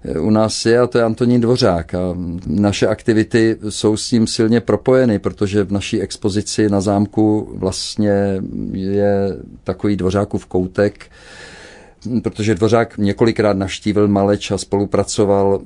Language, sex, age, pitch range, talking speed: Czech, male, 50-69, 95-110 Hz, 130 wpm